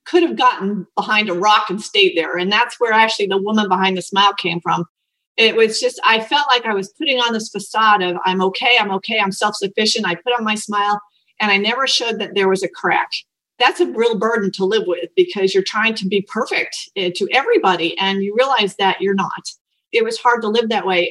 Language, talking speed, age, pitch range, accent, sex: English, 230 wpm, 40-59, 190-245 Hz, American, female